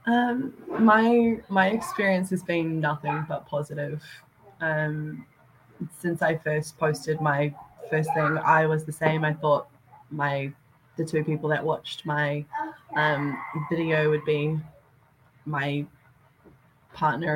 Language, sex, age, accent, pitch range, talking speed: English, female, 20-39, Australian, 145-170 Hz, 125 wpm